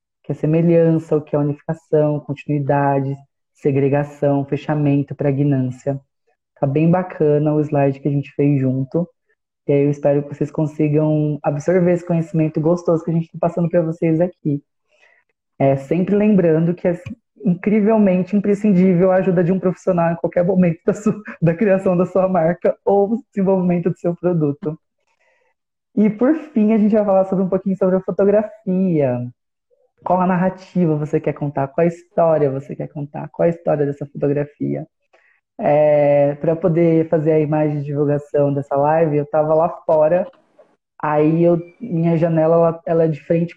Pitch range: 150-185 Hz